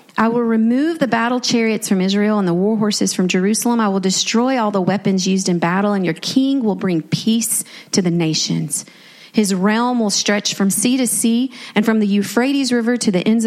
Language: English